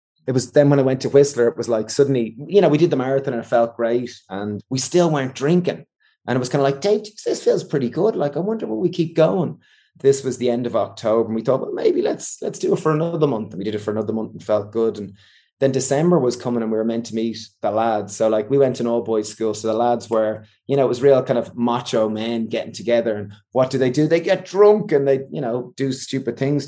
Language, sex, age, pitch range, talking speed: English, male, 20-39, 110-135 Hz, 280 wpm